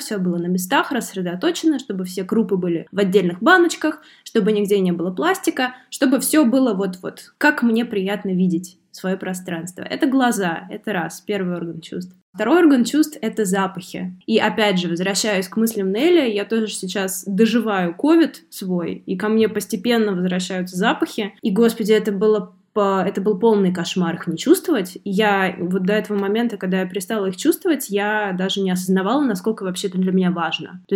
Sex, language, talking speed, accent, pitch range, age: female, Russian, 175 wpm, native, 190-235 Hz, 20-39